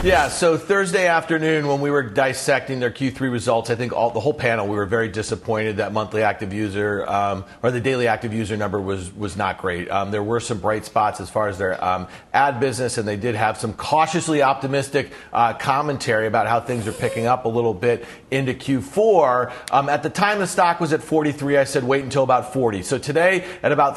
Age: 40-59